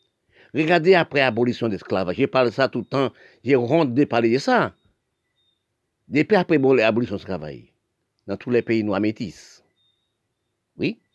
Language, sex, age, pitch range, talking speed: French, male, 50-69, 120-145 Hz, 155 wpm